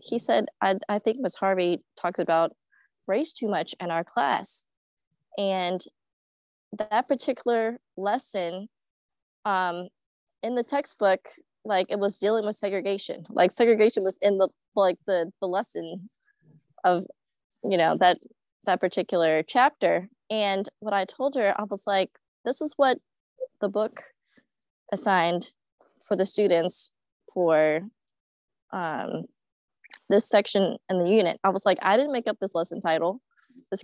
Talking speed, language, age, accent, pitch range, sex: 140 wpm, English, 20-39, American, 185-225 Hz, female